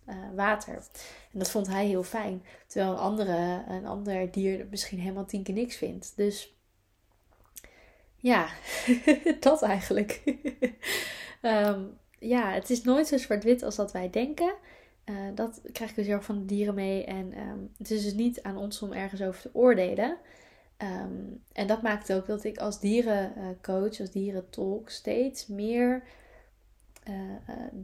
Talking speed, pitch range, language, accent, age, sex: 155 wpm, 195-230 Hz, Dutch, Dutch, 20-39, female